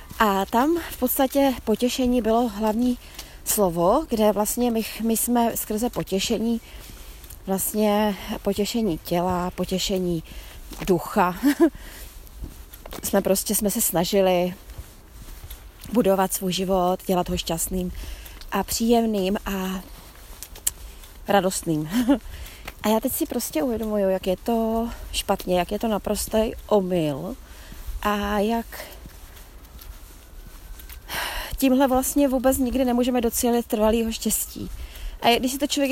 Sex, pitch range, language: female, 185-235 Hz, Czech